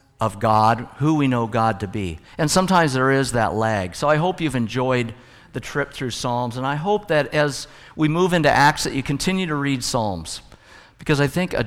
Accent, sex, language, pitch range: American, male, English, 110-150 Hz